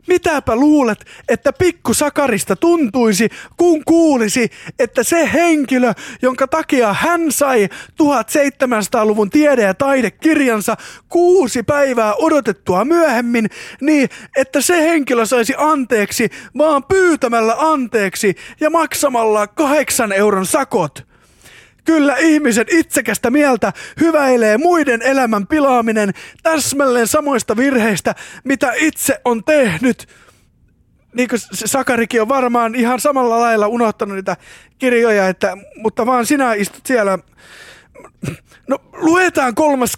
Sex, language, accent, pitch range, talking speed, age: male, English, Finnish, 220-295 Hz, 105 wpm, 30-49